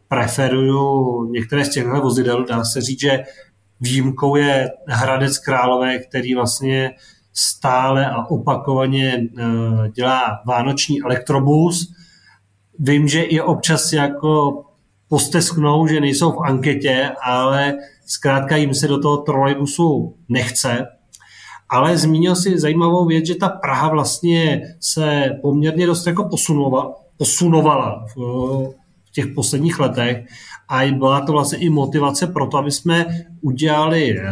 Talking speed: 120 wpm